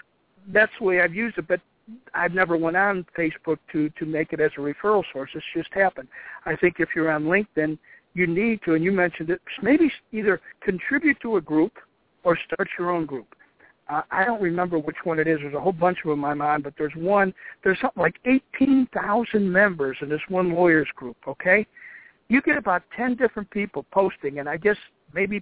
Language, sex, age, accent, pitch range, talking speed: English, male, 60-79, American, 155-205 Hz, 210 wpm